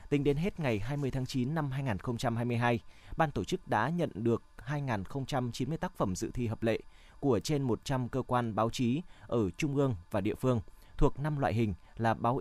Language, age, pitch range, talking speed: Vietnamese, 20-39, 110-145 Hz, 205 wpm